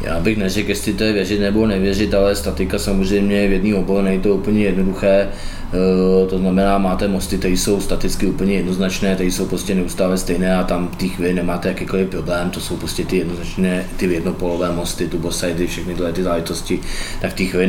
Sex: male